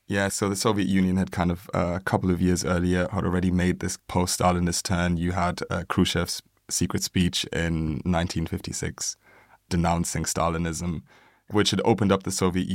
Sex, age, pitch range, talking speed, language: male, 20-39, 85-95 Hz, 170 wpm, English